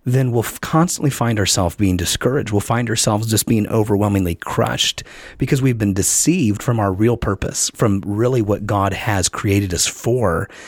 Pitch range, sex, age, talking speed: 100-130 Hz, male, 30-49, 175 wpm